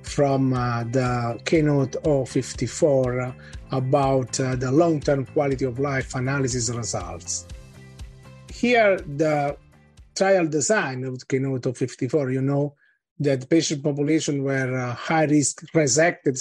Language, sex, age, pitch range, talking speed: English, male, 30-49, 130-155 Hz, 115 wpm